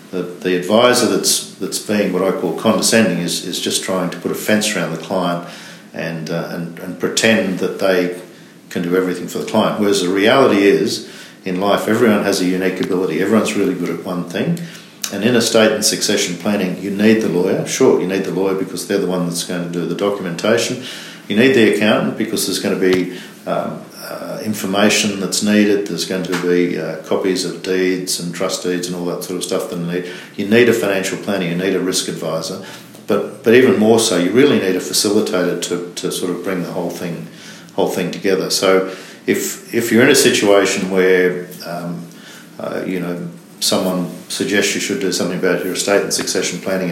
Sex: male